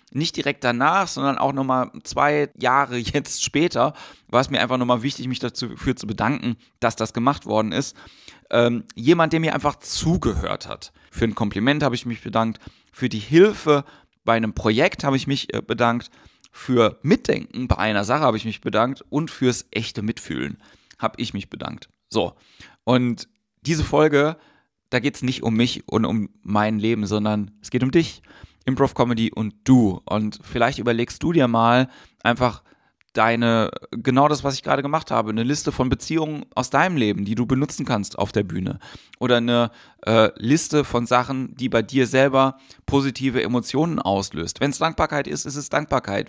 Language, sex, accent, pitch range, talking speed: German, male, German, 110-140 Hz, 180 wpm